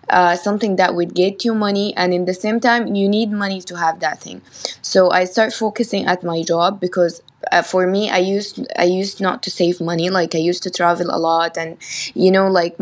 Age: 20-39